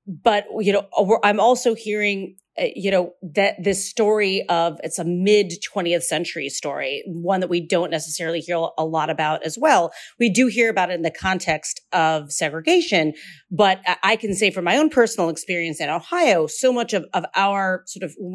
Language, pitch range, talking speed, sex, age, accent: English, 165-210 Hz, 190 wpm, female, 40-59, American